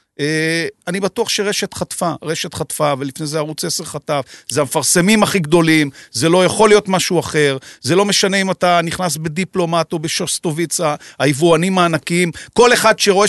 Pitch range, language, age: 170-220 Hz, Hebrew, 40-59